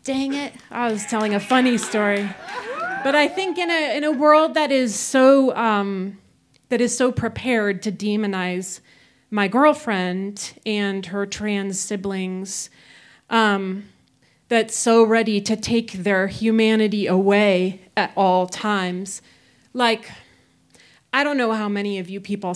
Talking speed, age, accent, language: 140 wpm, 30-49, American, English